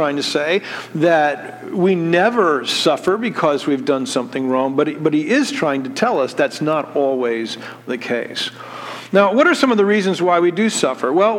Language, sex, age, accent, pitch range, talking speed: English, male, 50-69, American, 135-185 Hz, 200 wpm